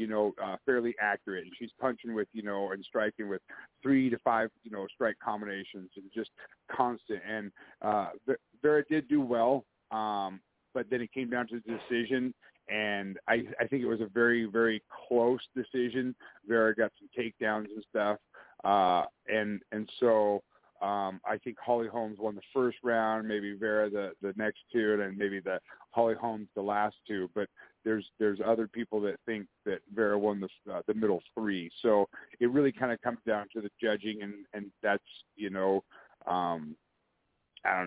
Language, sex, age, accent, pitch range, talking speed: English, male, 40-59, American, 100-115 Hz, 185 wpm